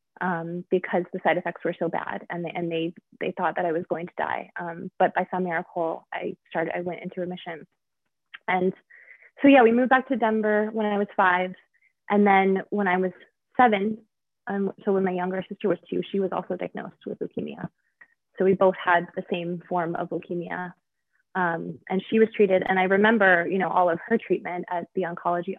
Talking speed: 205 wpm